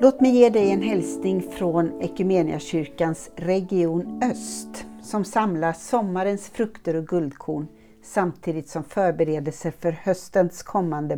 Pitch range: 160-200 Hz